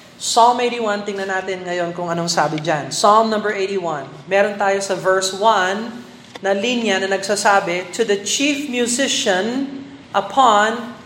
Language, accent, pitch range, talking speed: Filipino, native, 180-230 Hz, 140 wpm